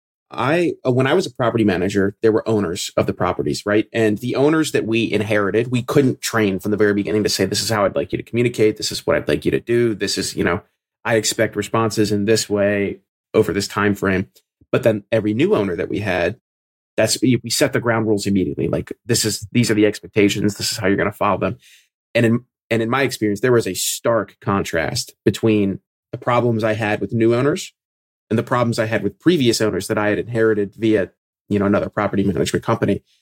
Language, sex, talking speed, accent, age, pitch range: English, male, 230 wpm, American, 30-49, 105-115 Hz